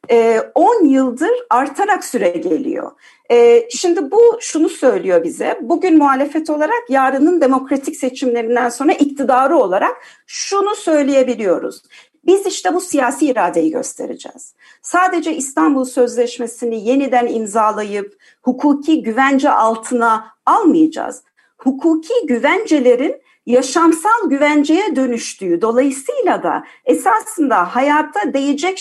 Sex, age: female, 50-69